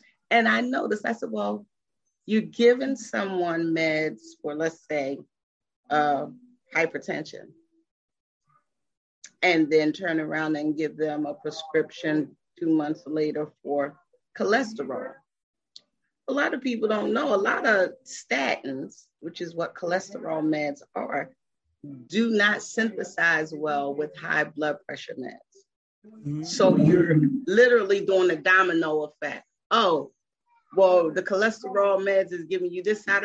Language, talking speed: English, 130 wpm